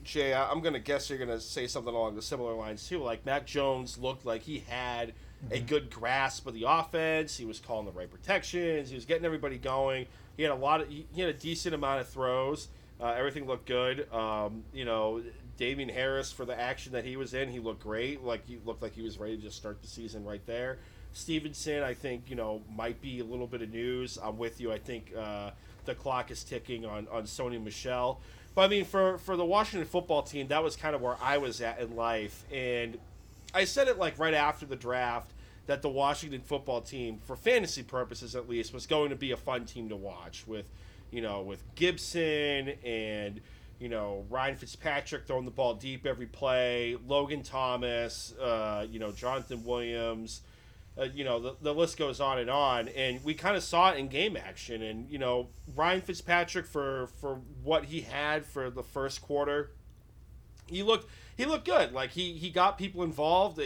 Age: 30-49